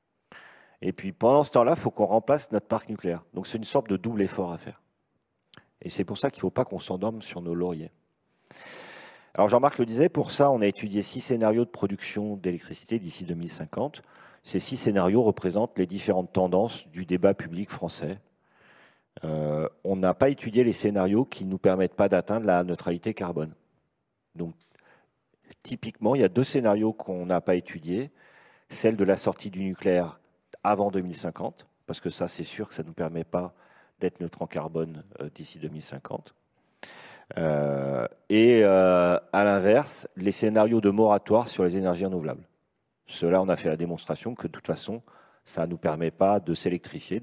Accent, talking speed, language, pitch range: French, 185 wpm, French, 85-110 Hz